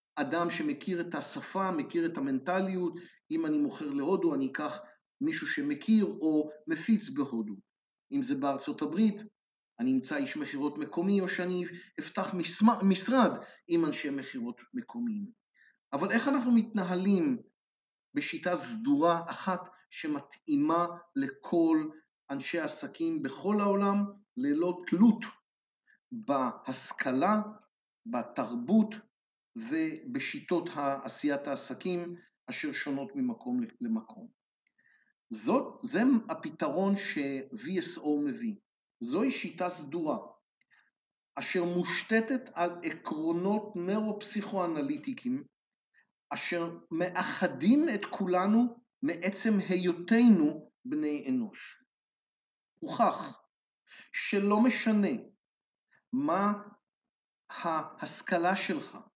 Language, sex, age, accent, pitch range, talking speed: Hebrew, male, 50-69, native, 175-260 Hz, 90 wpm